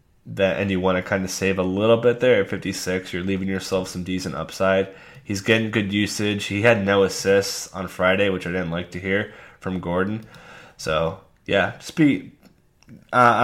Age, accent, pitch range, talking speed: 10-29, American, 90-105 Hz, 190 wpm